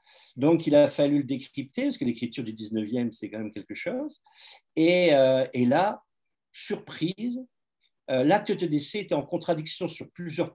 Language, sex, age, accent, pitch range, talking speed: French, male, 50-69, French, 120-160 Hz, 170 wpm